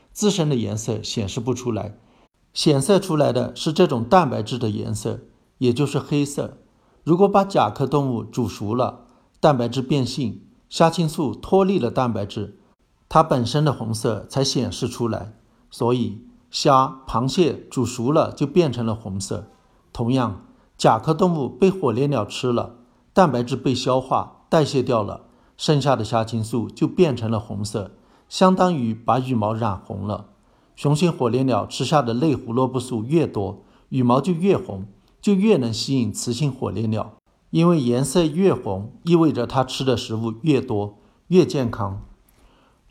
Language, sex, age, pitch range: Chinese, male, 50-69, 110-145 Hz